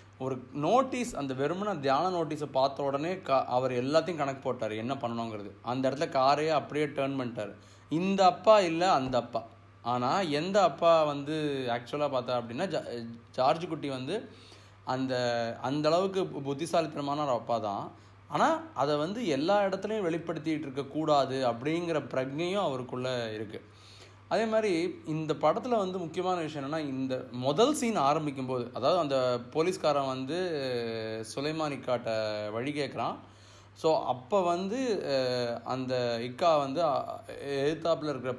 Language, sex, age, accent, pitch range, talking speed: Tamil, male, 30-49, native, 115-155 Hz, 125 wpm